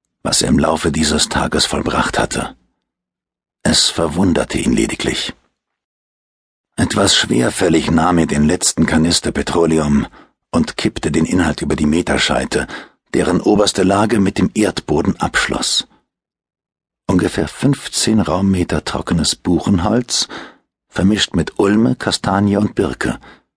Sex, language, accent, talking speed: male, German, German, 115 wpm